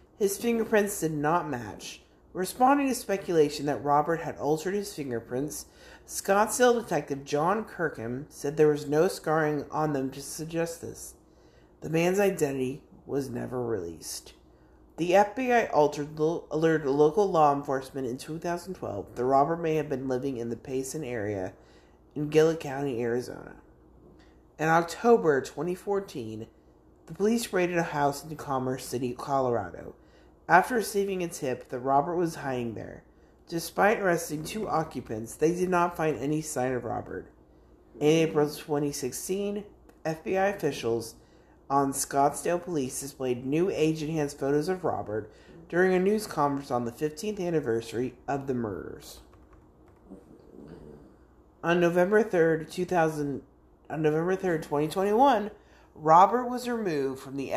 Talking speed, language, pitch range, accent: 130 wpm, English, 130-175 Hz, American